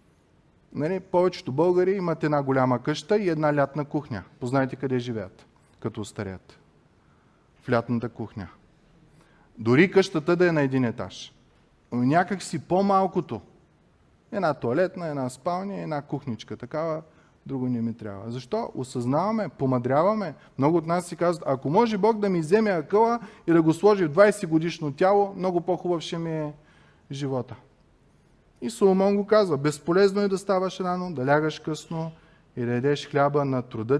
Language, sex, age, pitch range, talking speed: Bulgarian, male, 30-49, 125-170 Hz, 155 wpm